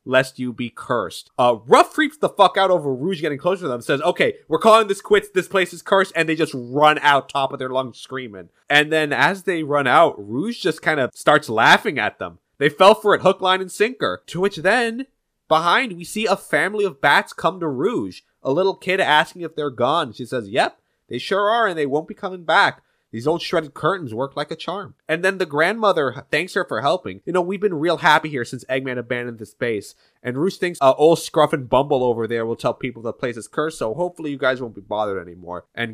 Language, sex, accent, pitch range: English, male, American, 130-190 Hz